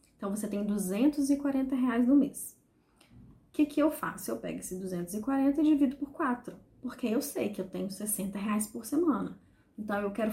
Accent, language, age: Brazilian, Portuguese, 20-39